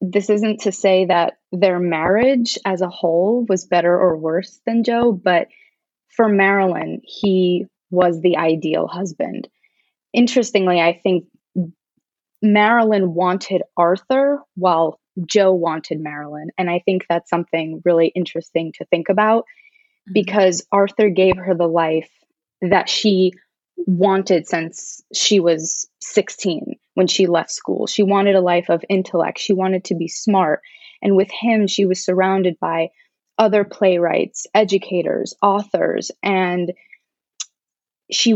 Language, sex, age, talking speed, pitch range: English, female, 20-39, 130 wpm, 175-205 Hz